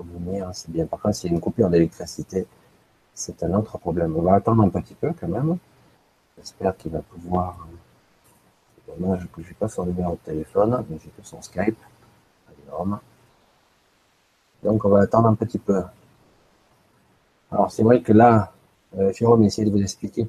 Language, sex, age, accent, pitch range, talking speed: French, male, 50-69, French, 90-115 Hz, 175 wpm